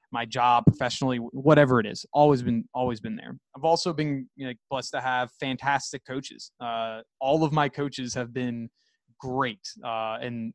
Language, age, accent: English, 20-39, American